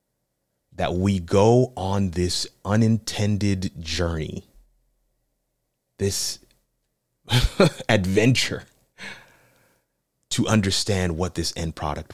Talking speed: 75 wpm